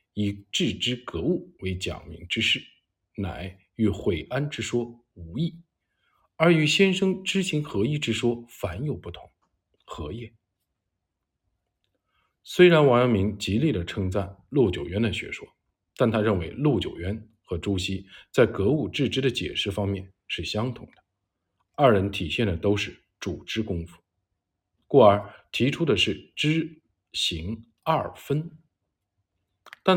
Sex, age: male, 50-69